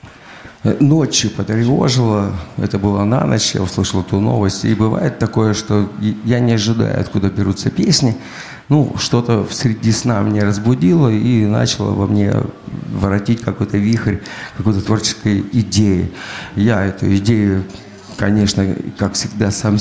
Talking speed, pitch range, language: 135 wpm, 100-115 Hz, Russian